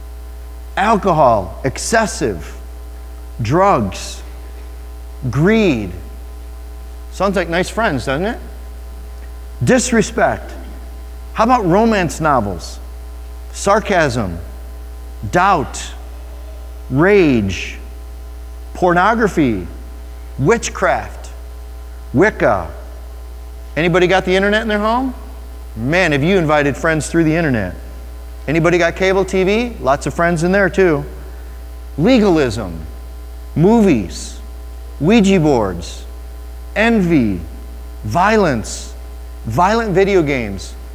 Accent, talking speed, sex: American, 80 wpm, male